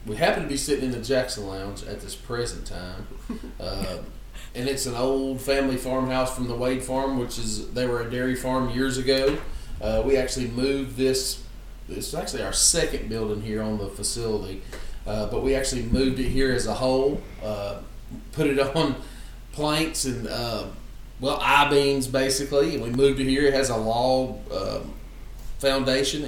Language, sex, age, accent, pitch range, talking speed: English, male, 40-59, American, 115-135 Hz, 180 wpm